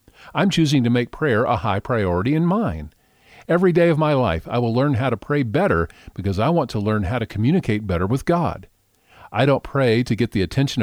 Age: 50-69